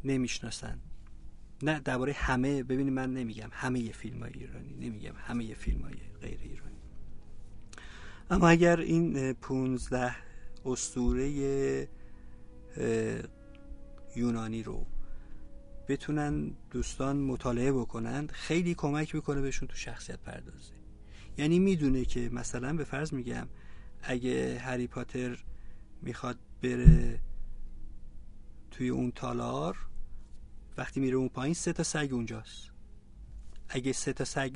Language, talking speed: Persian, 110 wpm